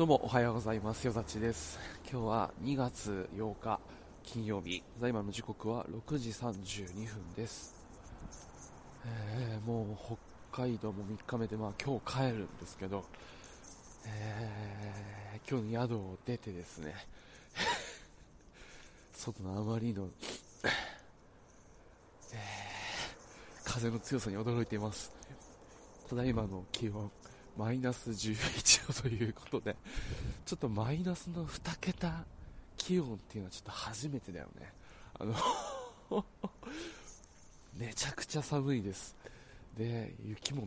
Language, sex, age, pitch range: Japanese, male, 20-39, 100-125 Hz